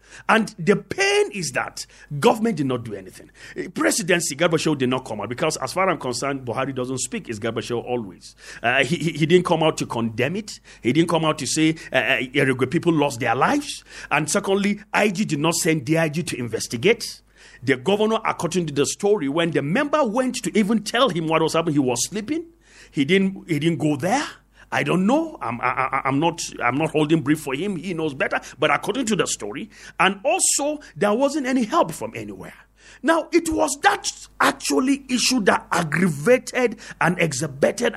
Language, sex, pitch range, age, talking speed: English, male, 145-240 Hz, 40-59, 195 wpm